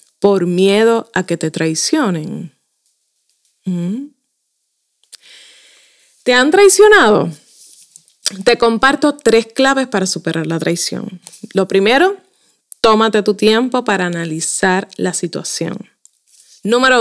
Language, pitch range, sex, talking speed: Spanish, 180-225 Hz, female, 95 wpm